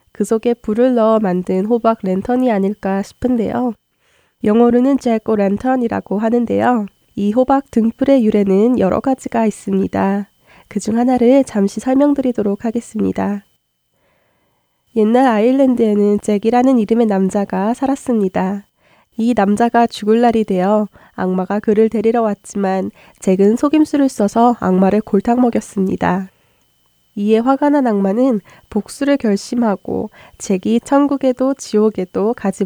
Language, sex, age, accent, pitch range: Korean, female, 20-39, native, 195-240 Hz